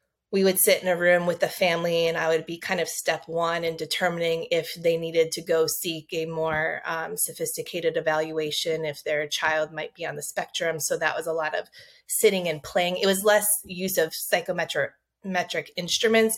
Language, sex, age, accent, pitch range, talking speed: English, female, 20-39, American, 160-205 Hz, 200 wpm